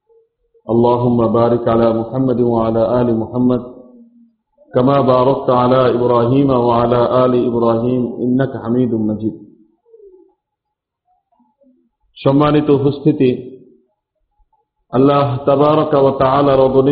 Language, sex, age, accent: Bengali, male, 50-69, native